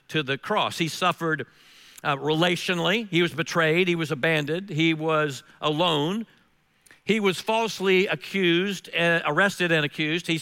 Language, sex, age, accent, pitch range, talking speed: English, male, 50-69, American, 155-195 Hz, 145 wpm